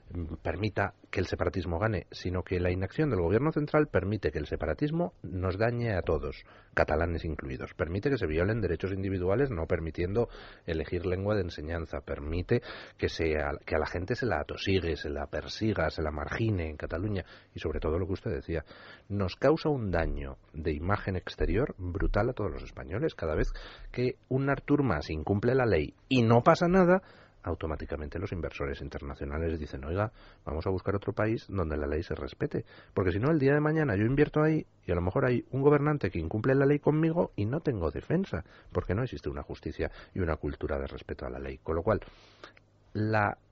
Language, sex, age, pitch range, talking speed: Spanish, male, 40-59, 80-120 Hz, 195 wpm